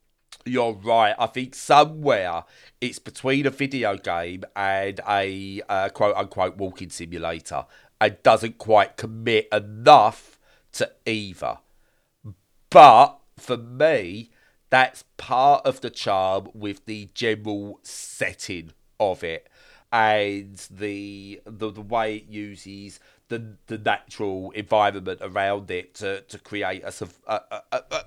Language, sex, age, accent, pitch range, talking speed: English, male, 40-59, British, 100-120 Hz, 120 wpm